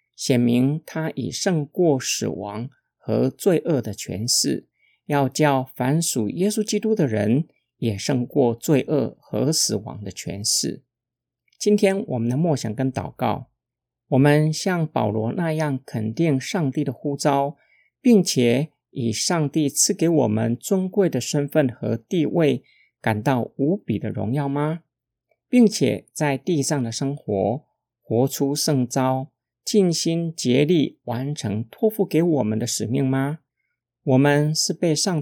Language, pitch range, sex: Chinese, 120-155 Hz, male